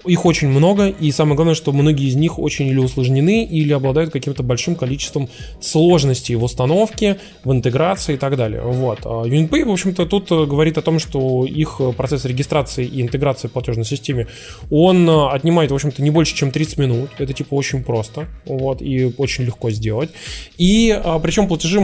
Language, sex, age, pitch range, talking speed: Russian, male, 20-39, 125-155 Hz, 180 wpm